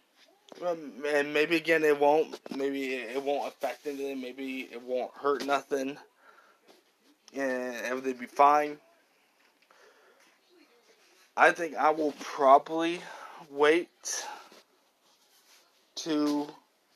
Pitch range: 125-150 Hz